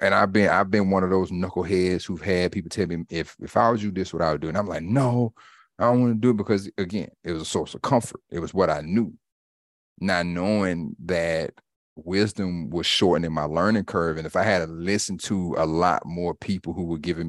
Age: 30-49